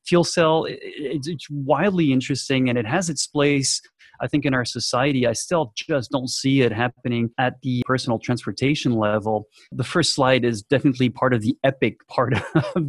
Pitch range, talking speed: 120-145 Hz, 175 wpm